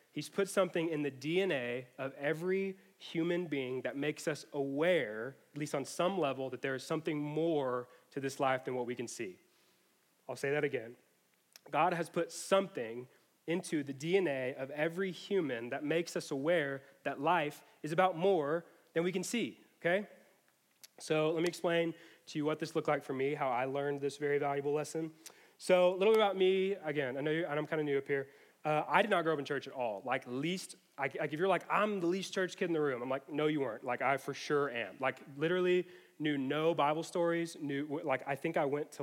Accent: American